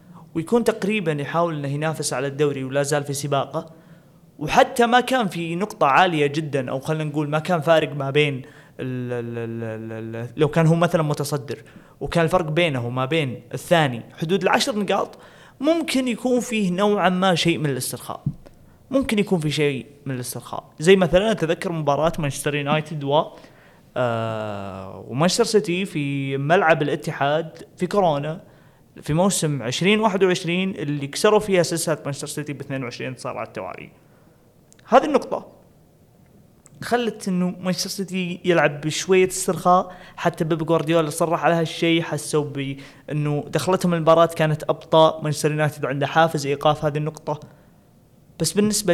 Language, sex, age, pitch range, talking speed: Arabic, male, 20-39, 140-180 Hz, 140 wpm